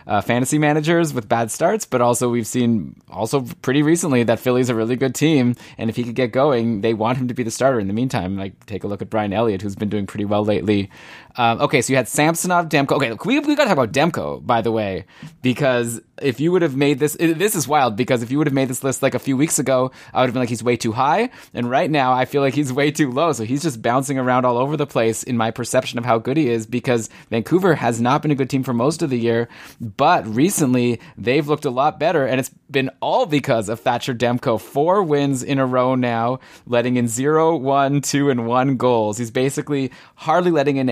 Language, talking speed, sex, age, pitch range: English, 250 wpm, male, 20-39, 120-145 Hz